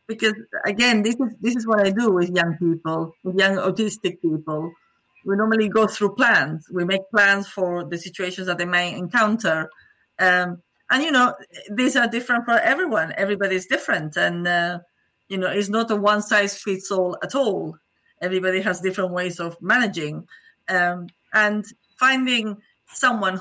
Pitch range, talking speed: 175-220 Hz, 170 wpm